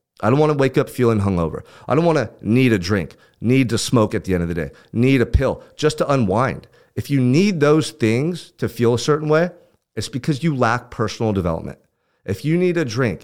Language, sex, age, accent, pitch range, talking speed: English, male, 40-59, American, 100-135 Hz, 230 wpm